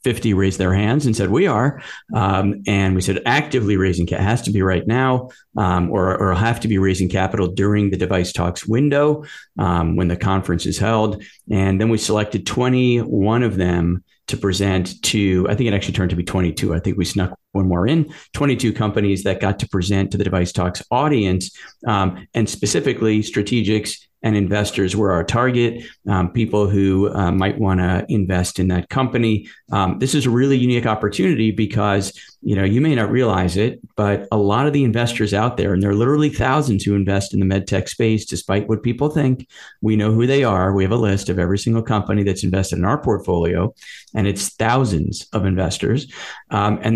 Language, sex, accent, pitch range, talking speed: English, male, American, 95-120 Hz, 200 wpm